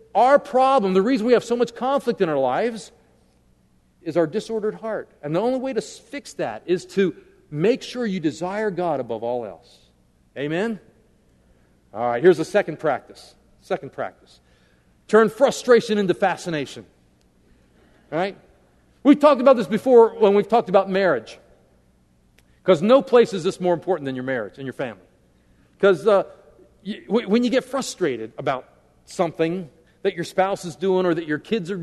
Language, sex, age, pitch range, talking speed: English, male, 50-69, 145-220 Hz, 170 wpm